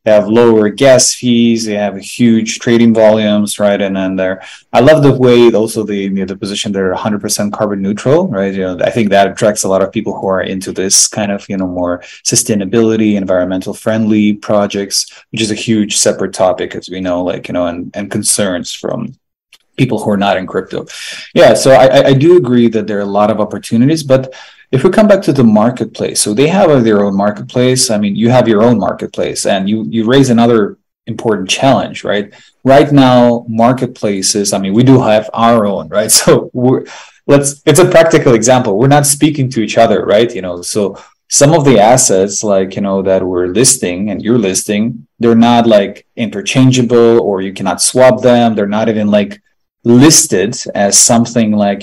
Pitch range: 100-130 Hz